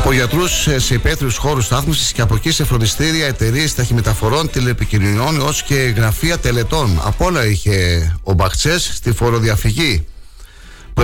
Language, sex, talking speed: Greek, male, 140 wpm